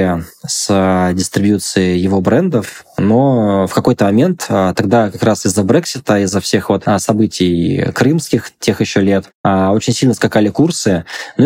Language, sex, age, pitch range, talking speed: Russian, male, 20-39, 100-120 Hz, 130 wpm